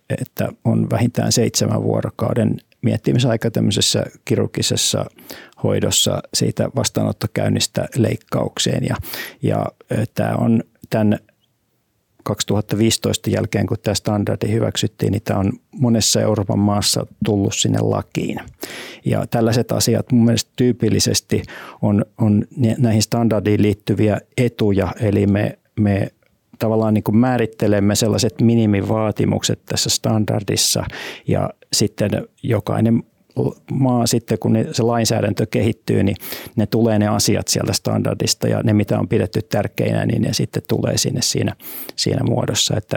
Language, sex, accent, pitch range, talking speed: Finnish, male, native, 105-120 Hz, 120 wpm